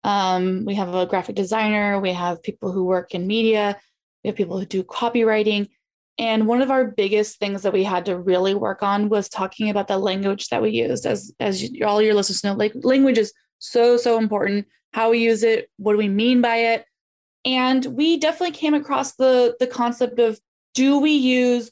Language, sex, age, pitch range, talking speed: English, female, 20-39, 205-245 Hz, 205 wpm